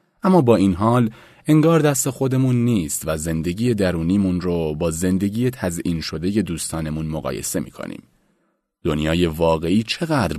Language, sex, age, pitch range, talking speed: Persian, male, 30-49, 80-135 Hz, 125 wpm